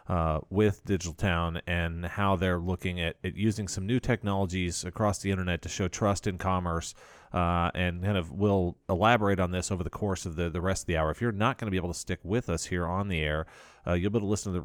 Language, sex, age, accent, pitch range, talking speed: English, male, 30-49, American, 85-100 Hz, 260 wpm